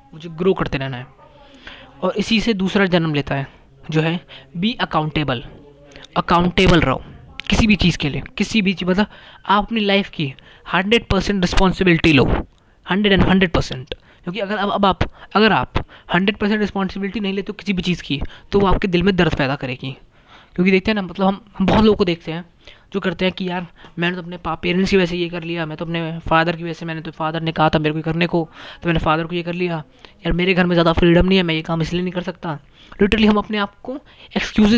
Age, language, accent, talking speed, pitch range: 20-39, Hindi, native, 235 wpm, 160-200 Hz